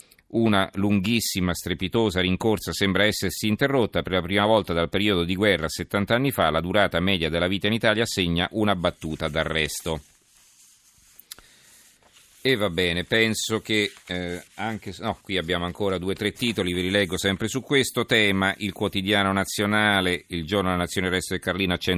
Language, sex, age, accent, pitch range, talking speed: Italian, male, 40-59, native, 85-110 Hz, 165 wpm